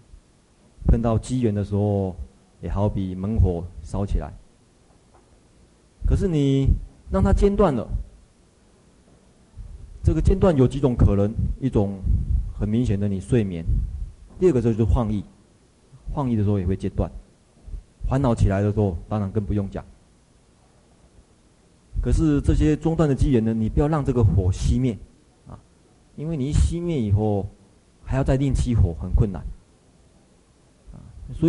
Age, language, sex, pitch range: 30-49, Chinese, male, 95-125 Hz